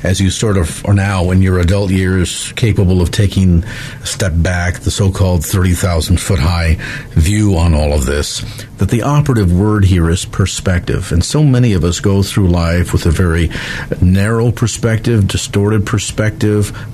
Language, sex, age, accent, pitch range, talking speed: English, male, 50-69, American, 100-140 Hz, 165 wpm